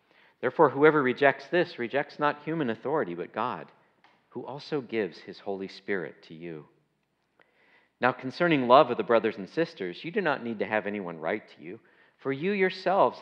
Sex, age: male, 50-69